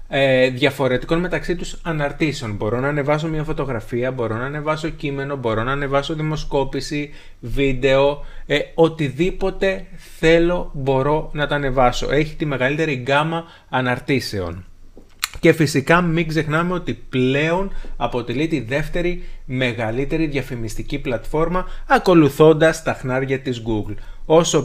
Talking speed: 115 wpm